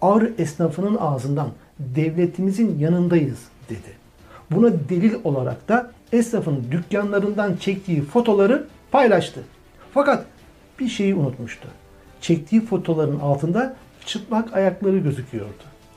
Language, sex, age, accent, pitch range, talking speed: Turkish, male, 60-79, native, 145-210 Hz, 95 wpm